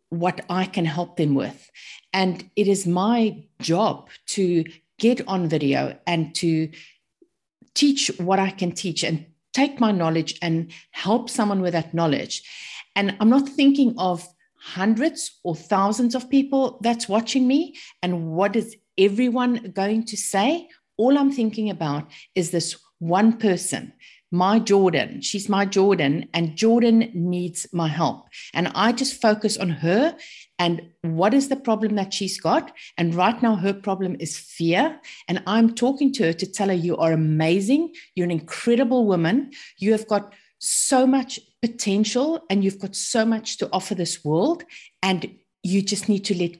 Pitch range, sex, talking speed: 175-230 Hz, female, 165 wpm